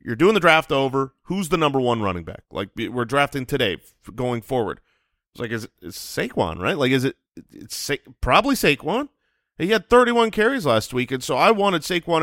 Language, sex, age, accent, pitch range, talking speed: English, male, 30-49, American, 110-145 Hz, 205 wpm